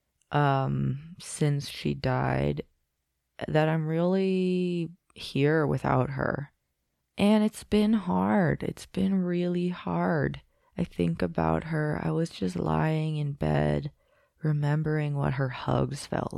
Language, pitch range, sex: English, 135-195 Hz, female